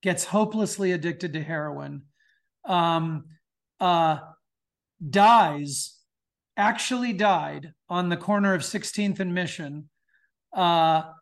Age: 40-59